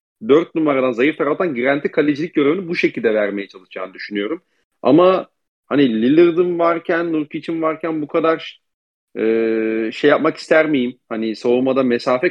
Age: 40-59